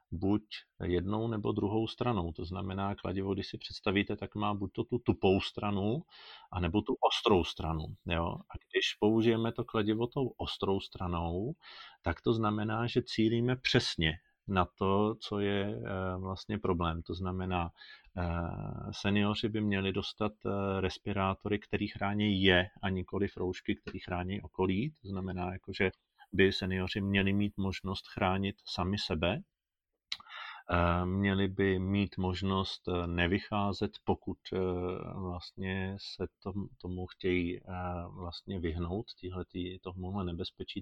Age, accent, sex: 40-59, native, male